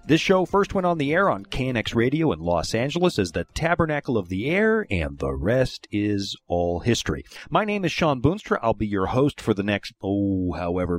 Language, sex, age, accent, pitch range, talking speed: English, male, 40-59, American, 100-160 Hz, 215 wpm